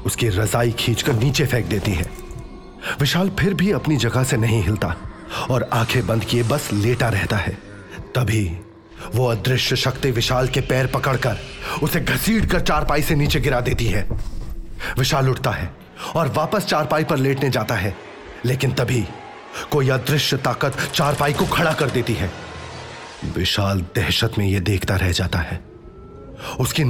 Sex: male